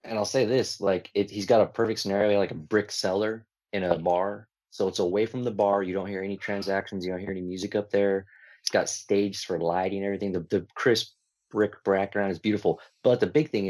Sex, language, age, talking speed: male, English, 20-39, 230 wpm